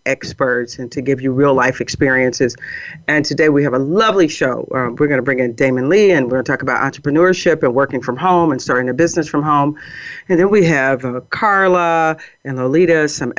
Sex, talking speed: female, 220 wpm